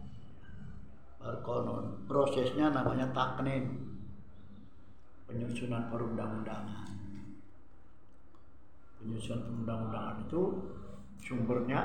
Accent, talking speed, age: native, 55 wpm, 60-79